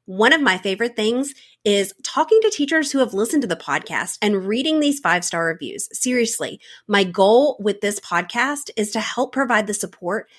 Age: 30-49